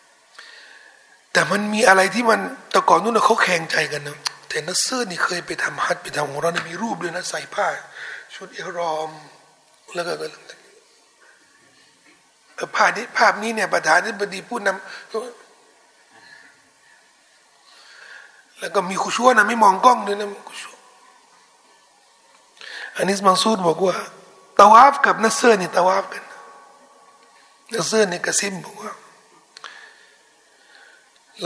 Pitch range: 185-240 Hz